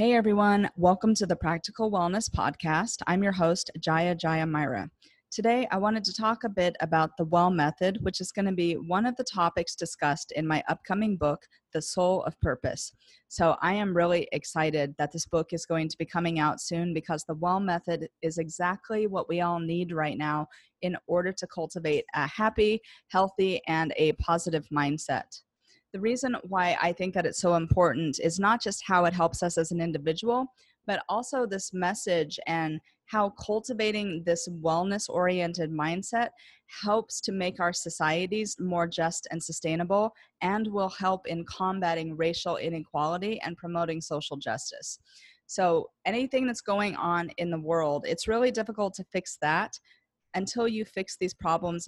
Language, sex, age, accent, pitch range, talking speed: English, female, 30-49, American, 165-200 Hz, 170 wpm